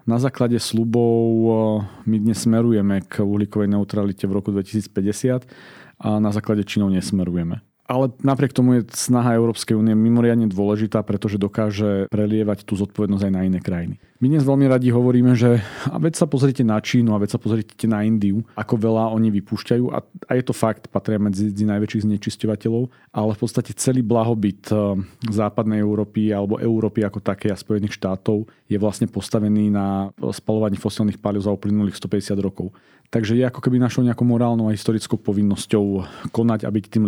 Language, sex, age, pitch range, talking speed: Slovak, male, 40-59, 105-120 Hz, 165 wpm